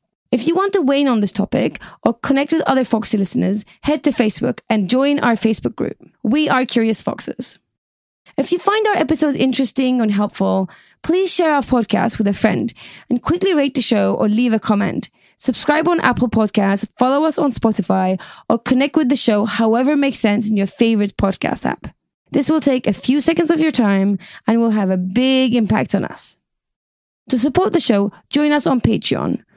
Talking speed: 195 wpm